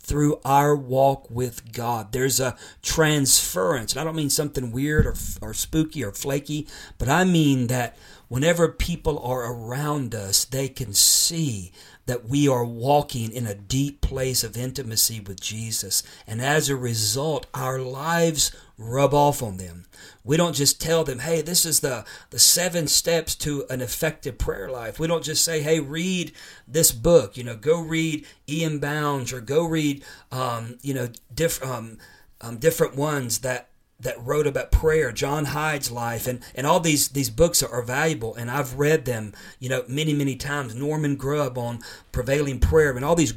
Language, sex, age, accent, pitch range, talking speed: English, male, 50-69, American, 120-155 Hz, 180 wpm